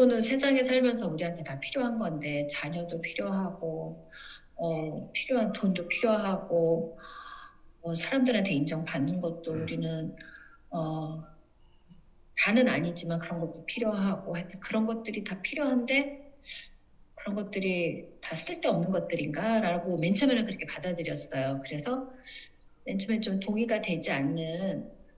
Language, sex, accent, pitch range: Korean, female, native, 170-245 Hz